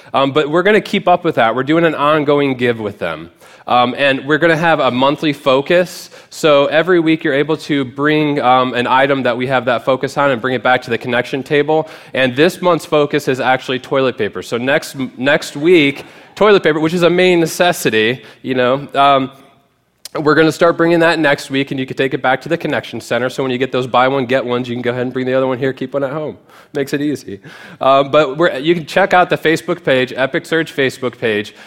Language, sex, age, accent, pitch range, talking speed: English, male, 20-39, American, 130-160 Hz, 245 wpm